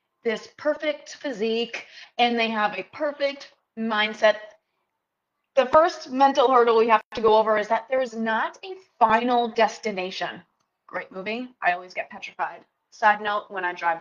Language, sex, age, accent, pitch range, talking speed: English, female, 20-39, American, 215-285 Hz, 160 wpm